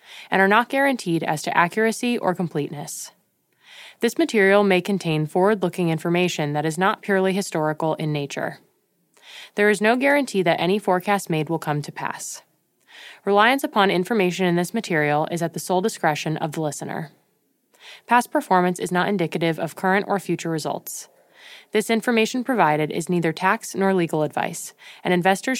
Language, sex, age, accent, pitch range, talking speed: English, female, 20-39, American, 165-205 Hz, 160 wpm